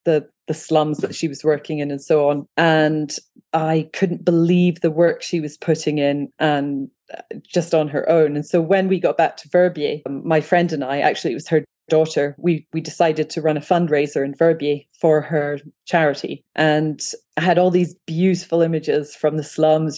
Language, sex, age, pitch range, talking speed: English, female, 30-49, 145-165 Hz, 195 wpm